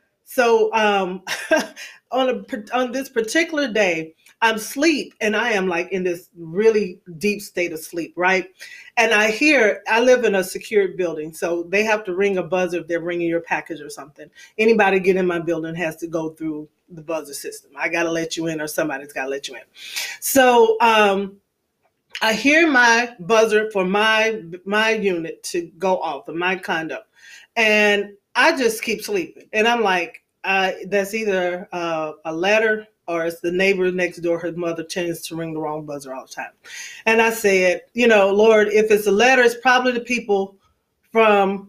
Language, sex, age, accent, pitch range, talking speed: English, female, 30-49, American, 175-225 Hz, 190 wpm